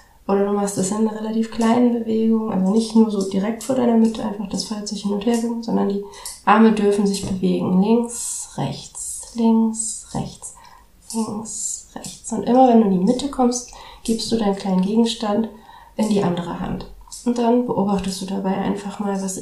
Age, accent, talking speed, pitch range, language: 30-49, German, 185 wpm, 190-230 Hz, German